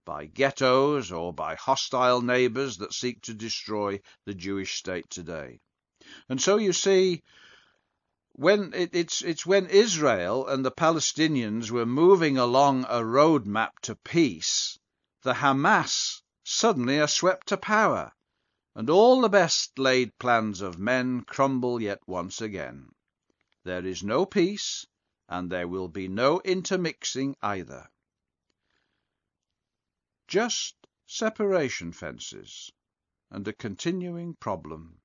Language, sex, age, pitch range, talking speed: English, male, 50-69, 110-175 Hz, 125 wpm